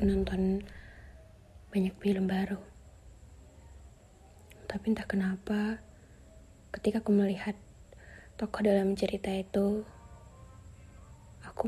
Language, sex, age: Indonesian, female, 20-39